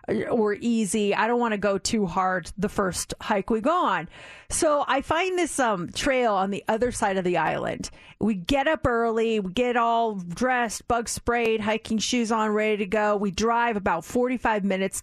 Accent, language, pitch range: American, English, 200-265 Hz